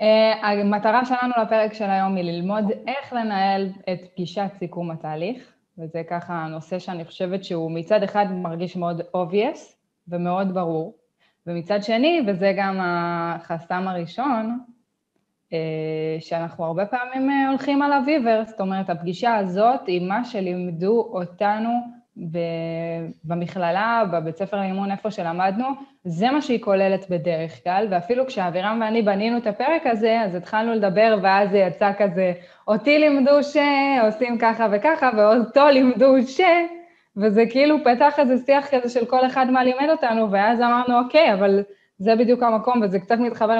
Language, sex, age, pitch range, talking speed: Hebrew, female, 20-39, 185-245 Hz, 140 wpm